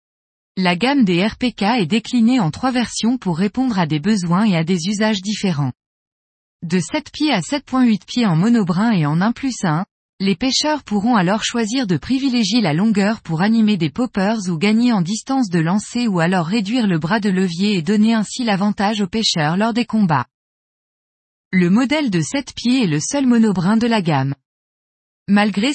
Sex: female